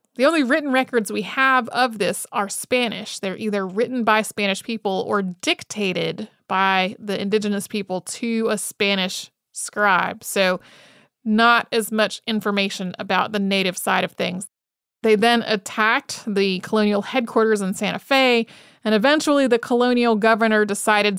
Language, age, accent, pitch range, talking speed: English, 30-49, American, 200-245 Hz, 145 wpm